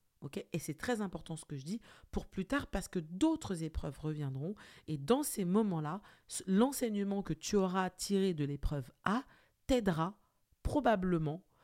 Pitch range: 155-210 Hz